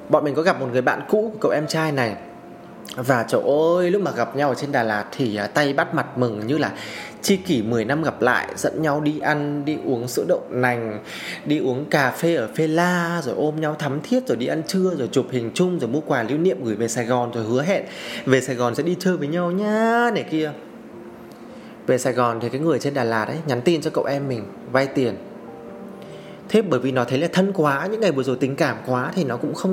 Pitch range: 125-165 Hz